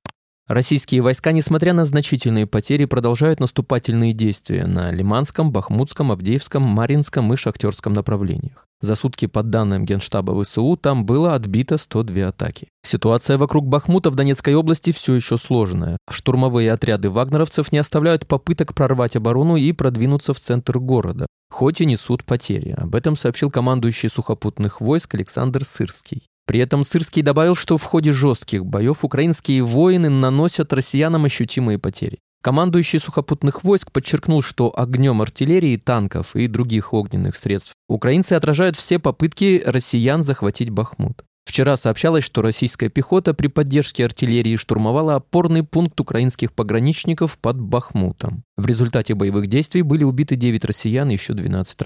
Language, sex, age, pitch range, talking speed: Russian, male, 20-39, 115-150 Hz, 140 wpm